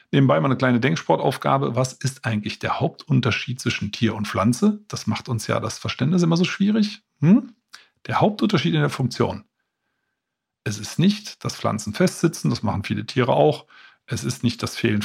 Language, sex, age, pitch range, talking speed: German, male, 40-59, 110-145 Hz, 180 wpm